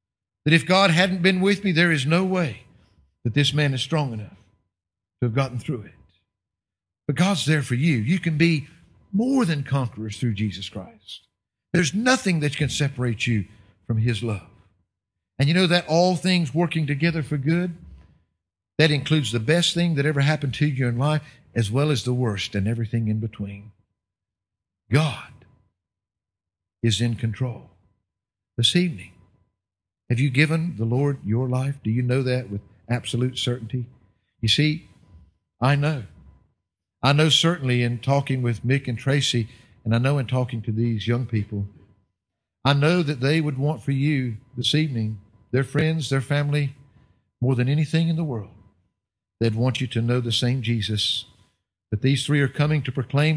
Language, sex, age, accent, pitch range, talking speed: English, male, 50-69, American, 105-145 Hz, 170 wpm